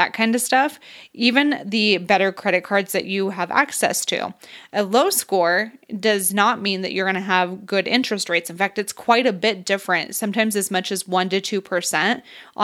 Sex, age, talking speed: female, 20-39, 200 wpm